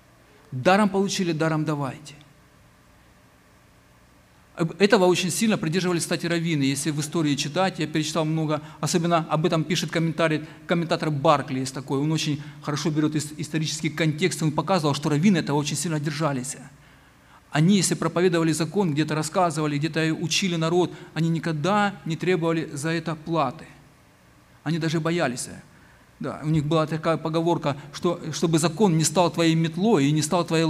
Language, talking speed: Ukrainian, 145 wpm